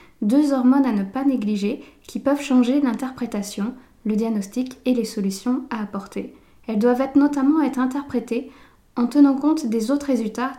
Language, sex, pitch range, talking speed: French, female, 220-270 Hz, 160 wpm